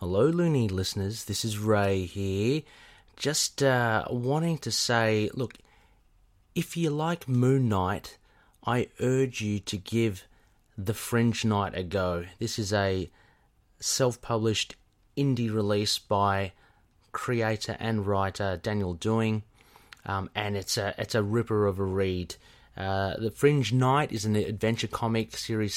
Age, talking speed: 30-49, 135 wpm